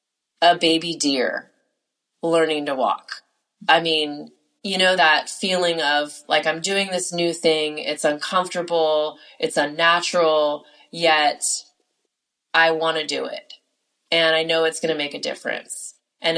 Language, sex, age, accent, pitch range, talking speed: English, female, 20-39, American, 155-185 Hz, 145 wpm